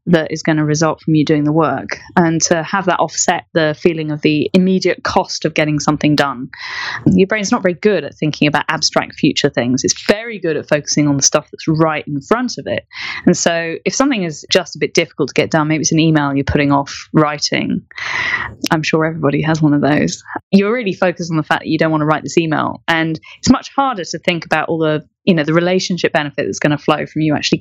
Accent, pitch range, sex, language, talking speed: British, 155-205 Hz, female, English, 240 wpm